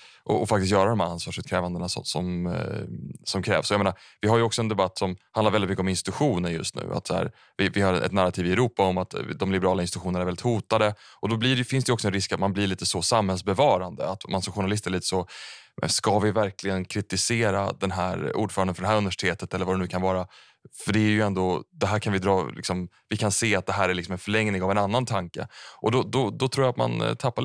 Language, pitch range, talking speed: Swedish, 90-105 Hz, 260 wpm